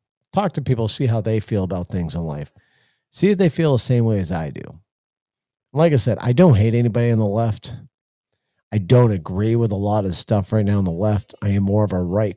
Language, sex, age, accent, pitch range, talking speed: English, male, 40-59, American, 95-130 Hz, 245 wpm